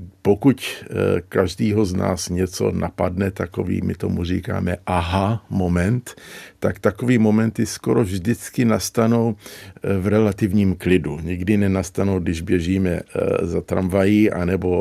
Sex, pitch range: male, 90-105 Hz